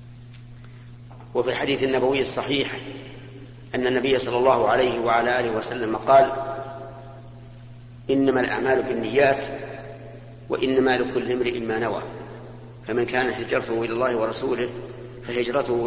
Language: Arabic